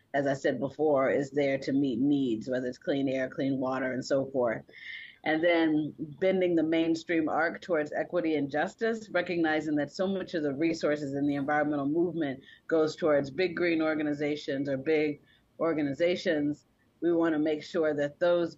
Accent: American